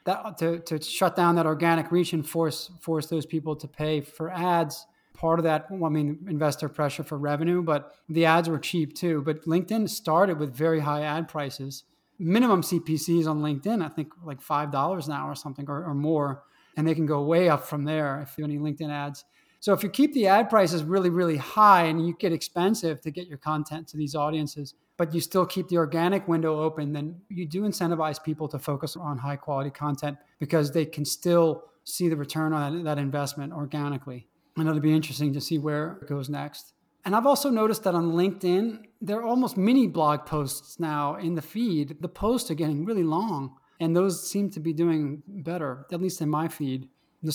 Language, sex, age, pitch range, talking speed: English, male, 30-49, 150-170 Hz, 215 wpm